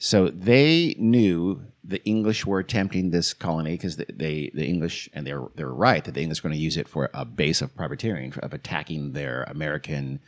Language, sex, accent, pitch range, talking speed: English, male, American, 75-110 Hz, 205 wpm